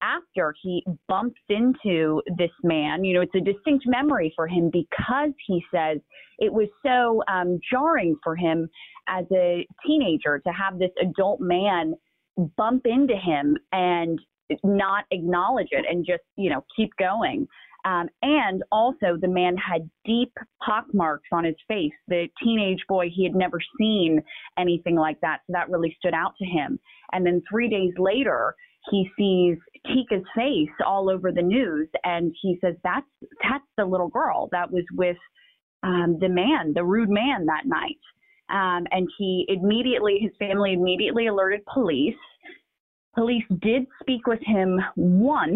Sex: female